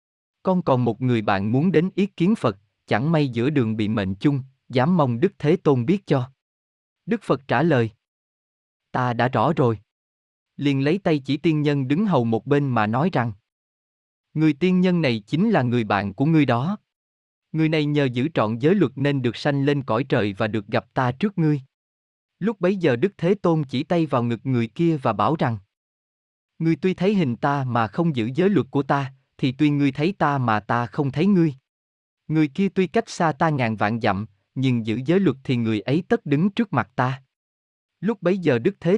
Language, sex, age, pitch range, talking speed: Vietnamese, male, 20-39, 115-160 Hz, 210 wpm